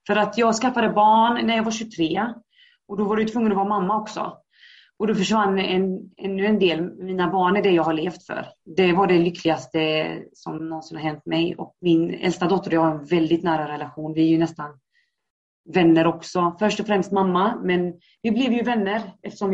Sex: female